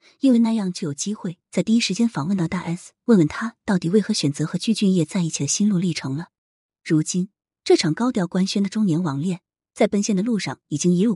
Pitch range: 155-210 Hz